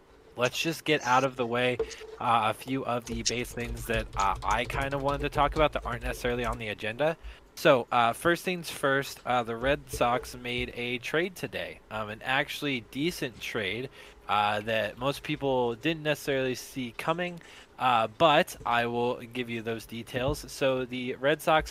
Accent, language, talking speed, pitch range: American, English, 185 wpm, 115-140 Hz